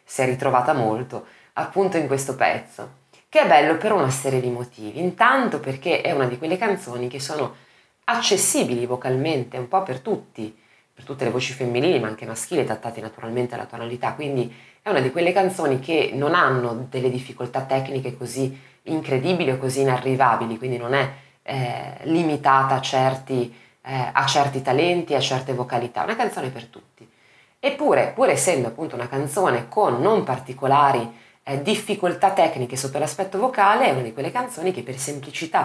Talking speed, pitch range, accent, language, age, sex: 170 wpm, 125-170 Hz, native, Italian, 20-39, female